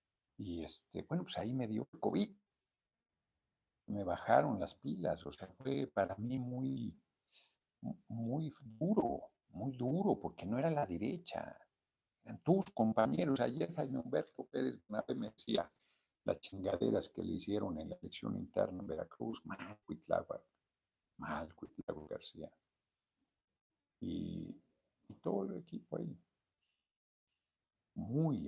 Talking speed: 125 wpm